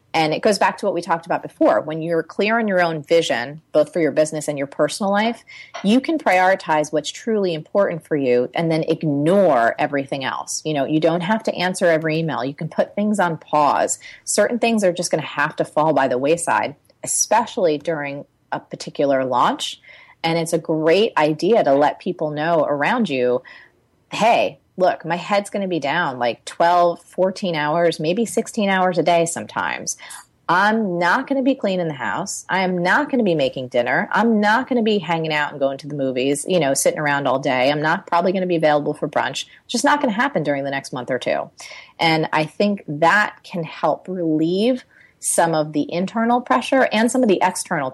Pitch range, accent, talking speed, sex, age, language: 150-195 Hz, American, 215 wpm, female, 30-49, English